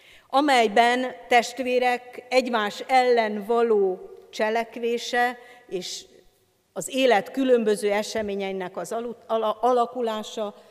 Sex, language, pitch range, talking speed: female, Hungarian, 190-245 Hz, 75 wpm